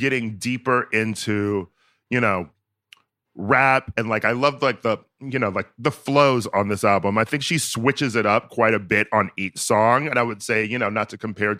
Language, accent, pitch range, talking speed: English, American, 105-130 Hz, 210 wpm